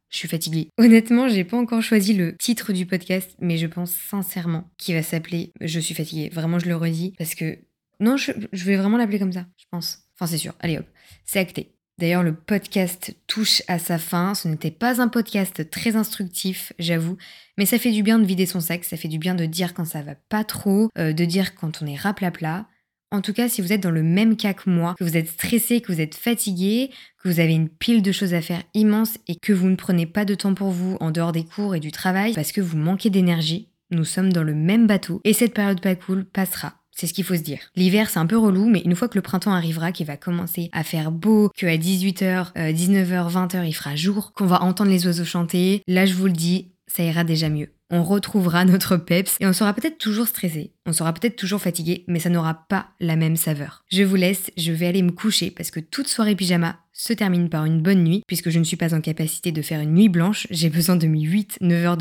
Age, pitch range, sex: 20-39, 170-205 Hz, female